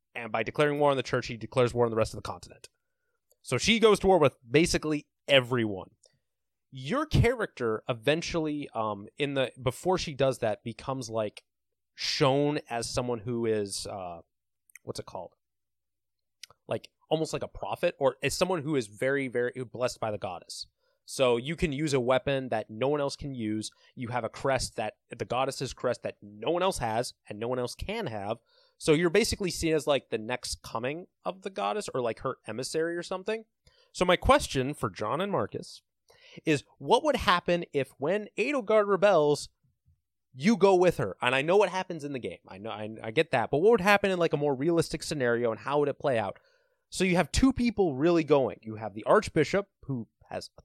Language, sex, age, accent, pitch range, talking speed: English, male, 20-39, American, 115-175 Hz, 205 wpm